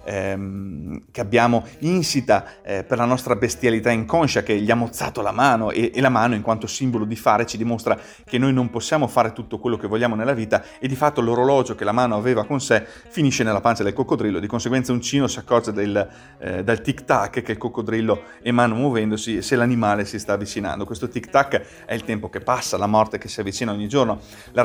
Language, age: Italian, 30-49